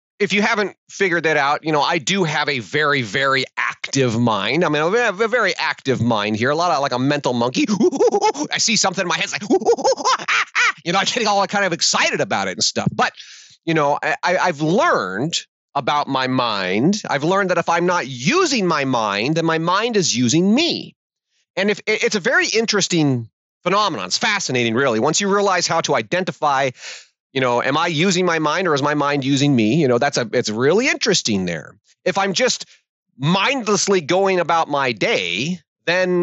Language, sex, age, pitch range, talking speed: English, male, 30-49, 140-195 Hz, 200 wpm